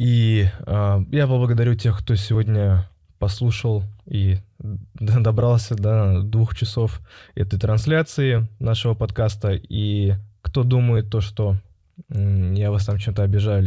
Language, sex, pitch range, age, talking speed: Russian, male, 100-115 Hz, 20-39, 125 wpm